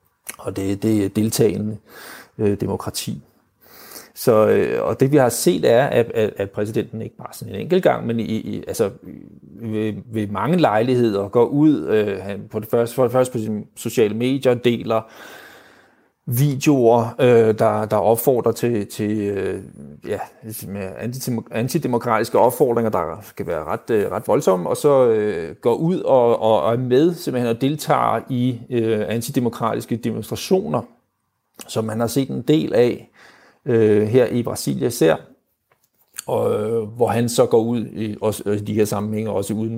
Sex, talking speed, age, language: male, 135 wpm, 30-49, Danish